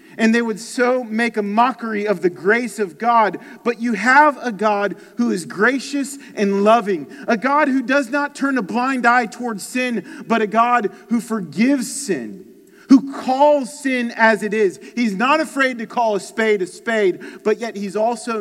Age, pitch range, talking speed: 40-59, 180-255 Hz, 190 wpm